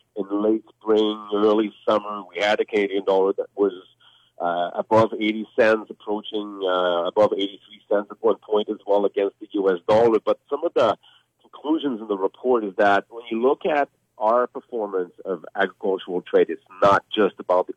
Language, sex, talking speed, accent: English, male, 180 wpm, American